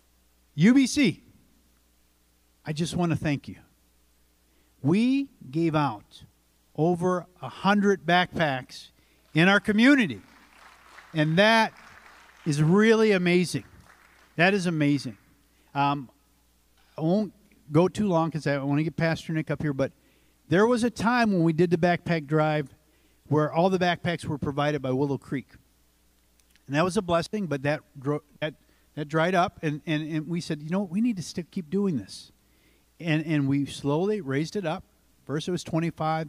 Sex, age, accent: male, 50-69, American